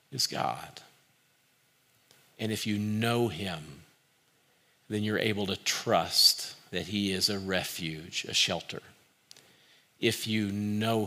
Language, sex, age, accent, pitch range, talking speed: English, male, 50-69, American, 100-120 Hz, 120 wpm